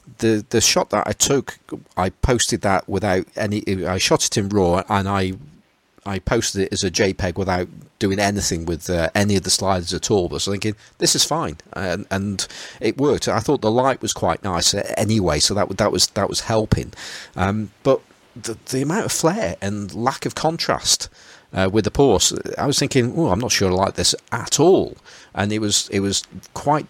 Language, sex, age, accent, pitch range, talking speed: English, male, 40-59, British, 95-120 Hz, 210 wpm